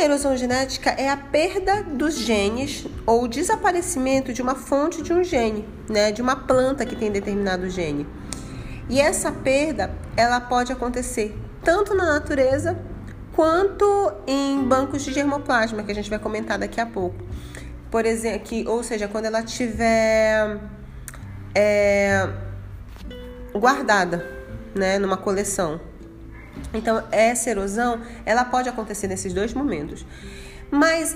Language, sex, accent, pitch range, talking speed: Portuguese, female, Brazilian, 200-285 Hz, 135 wpm